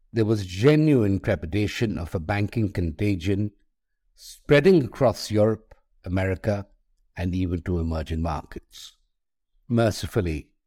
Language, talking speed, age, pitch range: English, 100 wpm, 50-69, 95-120 Hz